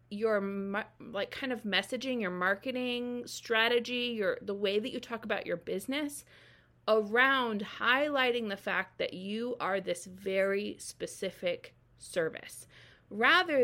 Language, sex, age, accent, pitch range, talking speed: English, female, 30-49, American, 190-250 Hz, 130 wpm